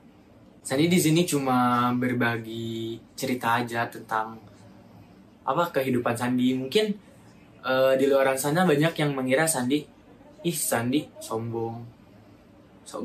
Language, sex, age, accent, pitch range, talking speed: Indonesian, male, 20-39, native, 115-140 Hz, 110 wpm